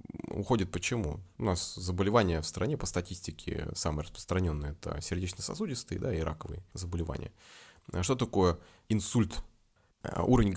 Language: Russian